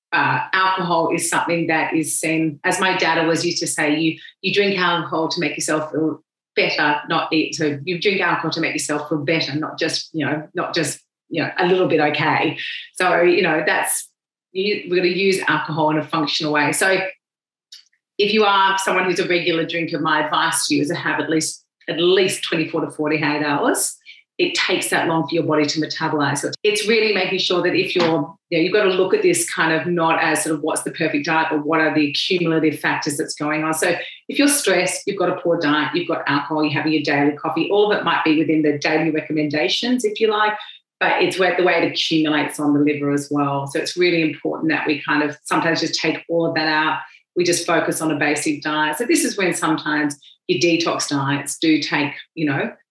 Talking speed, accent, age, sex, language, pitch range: 230 wpm, Australian, 30-49, female, English, 155-180 Hz